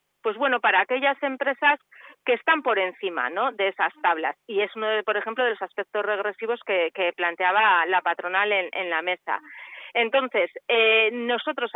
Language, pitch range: Spanish, 195-250 Hz